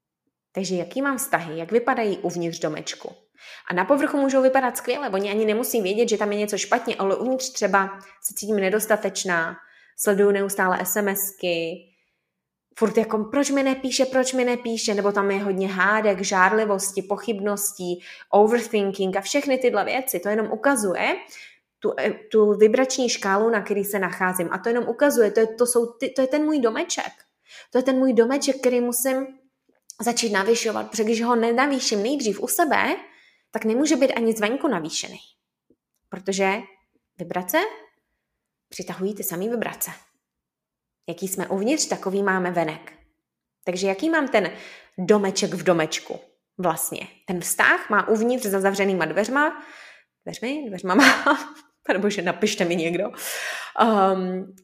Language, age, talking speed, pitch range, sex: Czech, 20-39, 150 wpm, 190-245 Hz, female